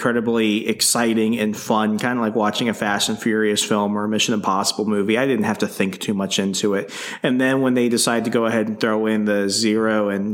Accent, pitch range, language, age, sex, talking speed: American, 110-150 Hz, English, 30-49, male, 240 wpm